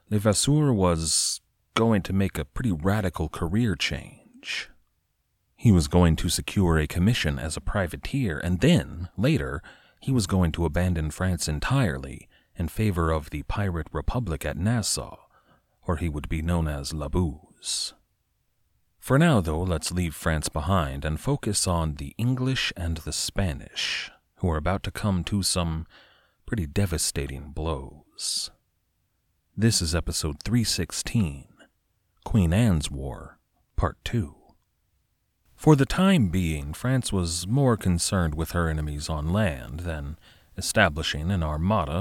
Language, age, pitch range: English, 30-49, 80-105 Hz